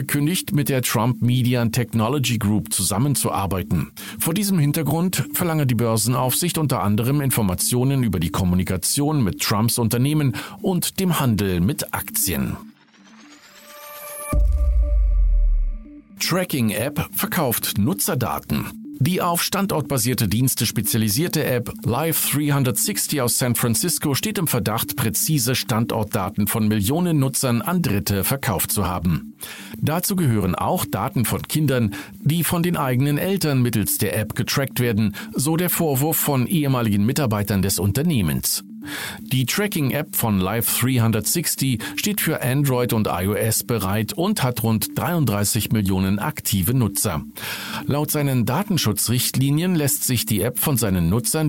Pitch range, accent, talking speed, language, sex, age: 110-150 Hz, German, 125 wpm, German, male, 50-69